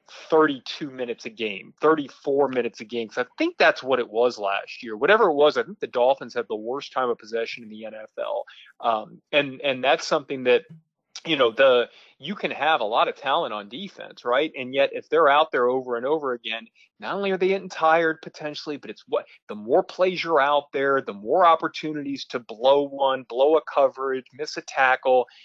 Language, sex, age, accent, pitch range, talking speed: English, male, 30-49, American, 130-170 Hz, 210 wpm